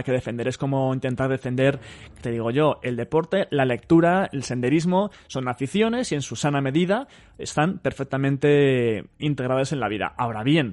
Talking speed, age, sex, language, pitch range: 170 wpm, 20-39, male, Spanish, 125-180 Hz